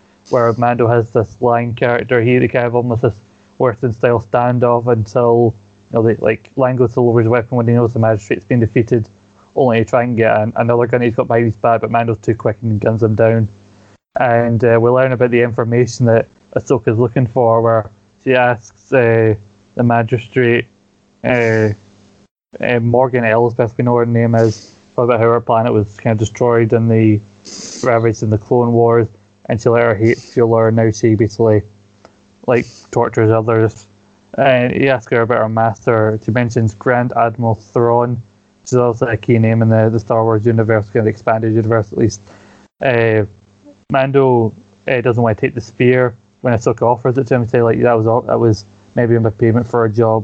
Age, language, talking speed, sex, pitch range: 20-39, English, 195 wpm, male, 110-120 Hz